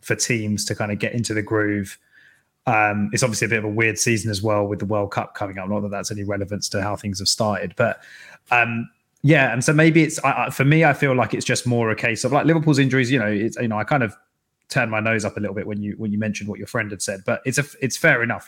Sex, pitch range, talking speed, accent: male, 105-130 Hz, 290 wpm, British